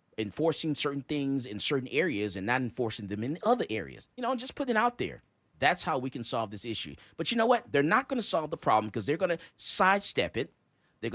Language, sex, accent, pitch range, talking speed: English, male, American, 135-215 Hz, 240 wpm